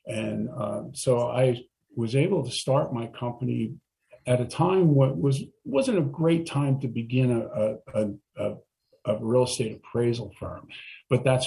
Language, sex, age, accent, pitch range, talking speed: English, male, 50-69, American, 120-145 Hz, 165 wpm